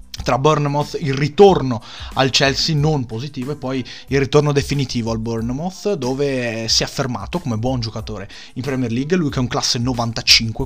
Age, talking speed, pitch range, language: 30-49, 175 wpm, 120-145 Hz, Italian